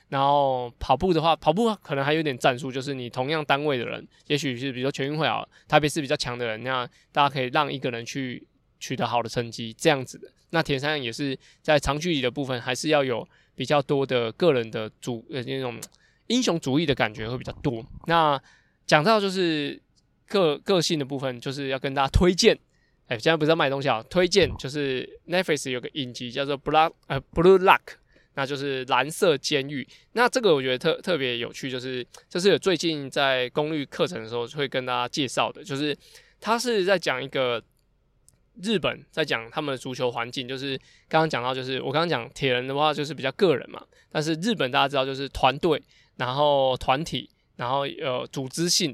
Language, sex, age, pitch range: Chinese, male, 20-39, 130-160 Hz